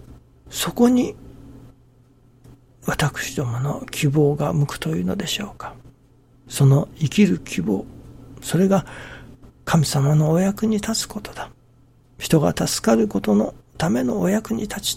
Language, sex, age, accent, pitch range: Japanese, male, 60-79, native, 125-160 Hz